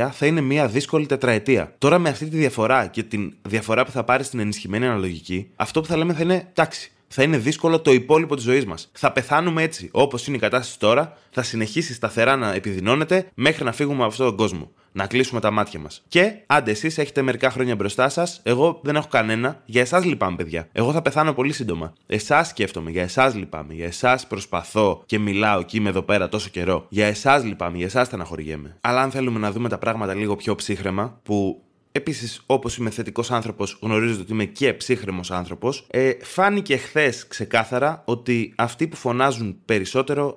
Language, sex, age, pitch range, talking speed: Greek, male, 20-39, 105-140 Hz, 200 wpm